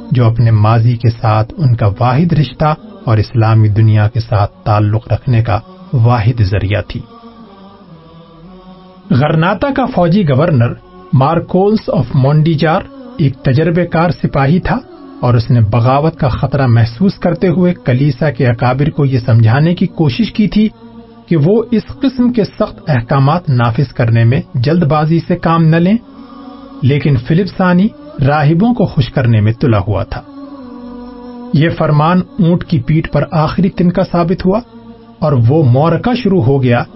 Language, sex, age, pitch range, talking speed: Urdu, male, 40-59, 130-200 Hz, 150 wpm